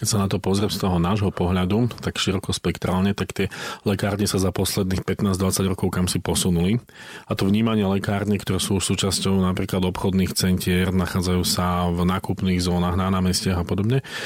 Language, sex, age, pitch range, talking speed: Slovak, male, 40-59, 90-100 Hz, 175 wpm